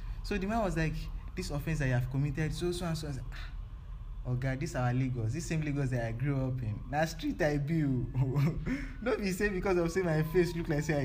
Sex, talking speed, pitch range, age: male, 250 wpm, 130-160 Hz, 20-39